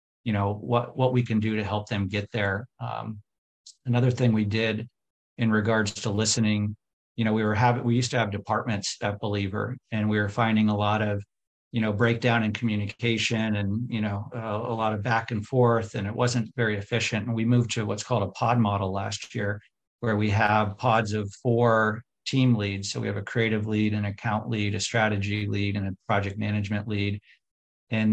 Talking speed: 205 wpm